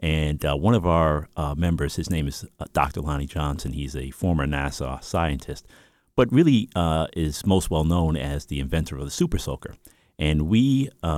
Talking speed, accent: 195 wpm, American